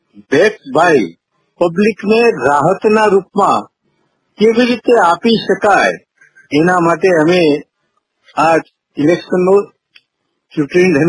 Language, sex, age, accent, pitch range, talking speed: Gujarati, male, 50-69, native, 180-230 Hz, 55 wpm